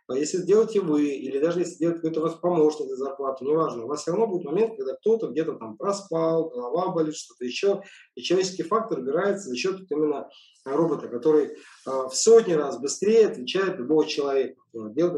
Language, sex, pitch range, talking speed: Russian, male, 150-220 Hz, 180 wpm